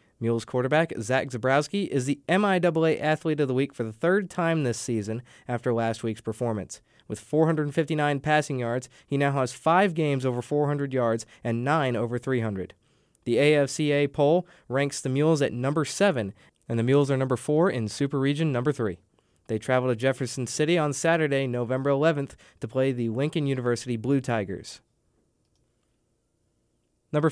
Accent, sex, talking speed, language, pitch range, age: American, male, 165 wpm, English, 120-155 Hz, 20-39